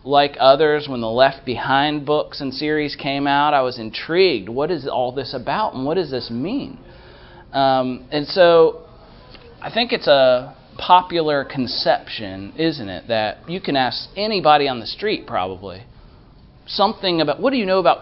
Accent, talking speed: American, 170 wpm